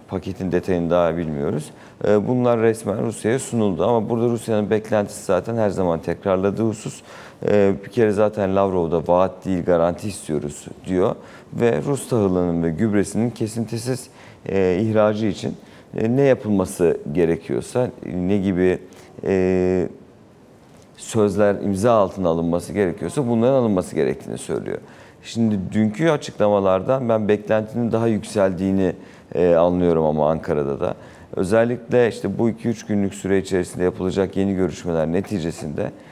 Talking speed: 120 wpm